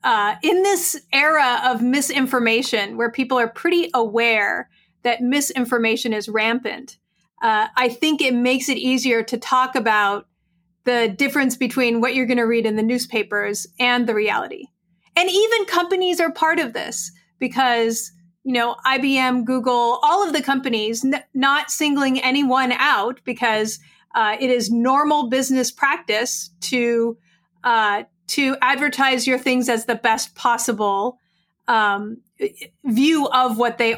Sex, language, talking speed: female, English, 145 wpm